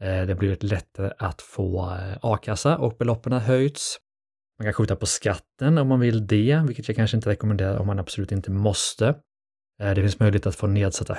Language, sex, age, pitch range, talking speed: Swedish, male, 20-39, 100-120 Hz, 190 wpm